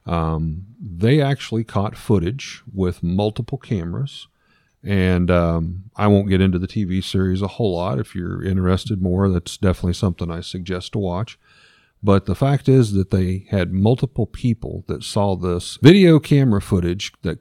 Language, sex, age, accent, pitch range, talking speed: English, male, 40-59, American, 95-125 Hz, 160 wpm